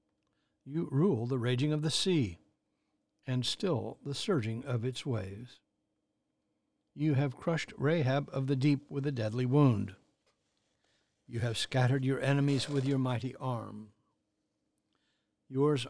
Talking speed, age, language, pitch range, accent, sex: 130 wpm, 60-79, English, 115-145 Hz, American, male